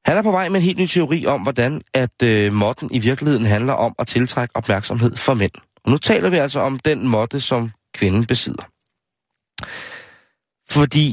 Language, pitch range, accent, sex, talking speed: Danish, 110-140 Hz, native, male, 190 wpm